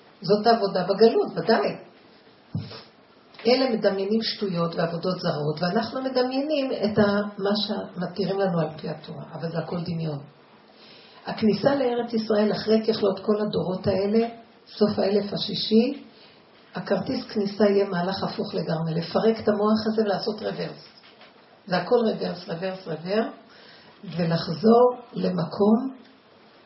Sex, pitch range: female, 185-225 Hz